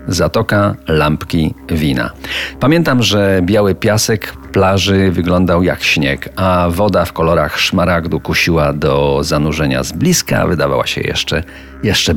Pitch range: 80-110 Hz